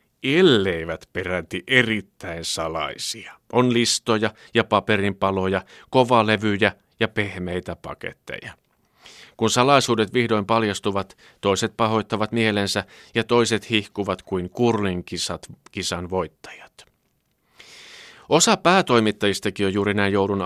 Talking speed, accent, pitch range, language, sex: 90 wpm, native, 95-115 Hz, Finnish, male